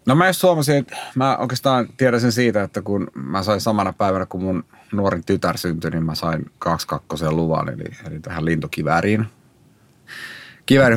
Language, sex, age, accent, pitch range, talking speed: Finnish, male, 30-49, native, 80-100 Hz, 170 wpm